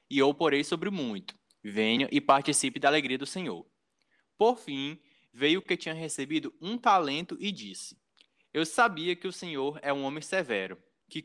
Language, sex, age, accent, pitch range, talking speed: Portuguese, male, 20-39, Brazilian, 135-180 Hz, 180 wpm